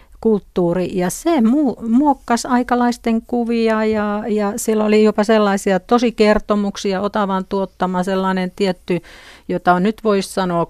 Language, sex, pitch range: Finnish, female, 180-210 Hz